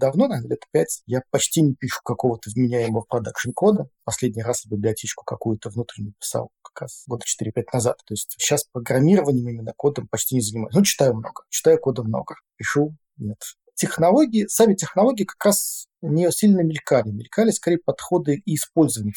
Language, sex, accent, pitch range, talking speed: Russian, male, native, 120-160 Hz, 165 wpm